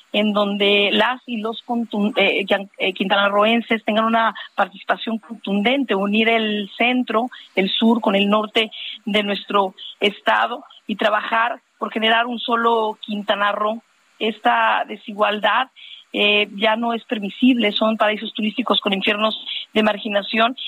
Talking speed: 130 wpm